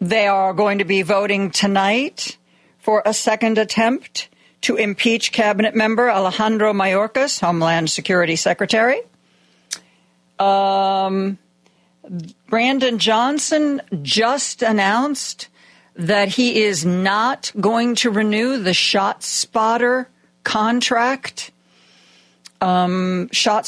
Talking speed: 95 wpm